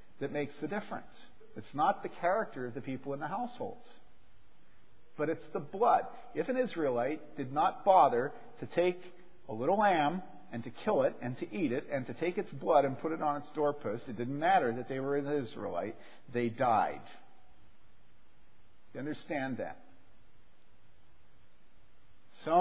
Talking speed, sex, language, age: 165 wpm, male, English, 50-69